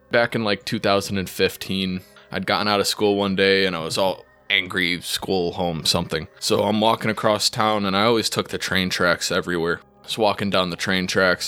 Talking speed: 205 wpm